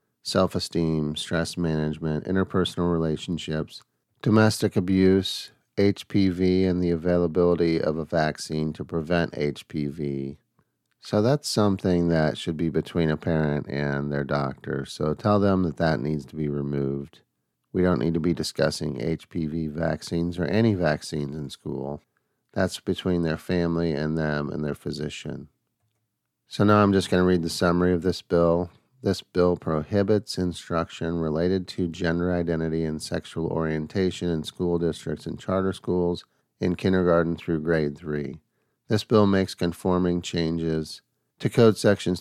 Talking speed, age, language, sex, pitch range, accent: 145 wpm, 40-59, English, male, 75-95 Hz, American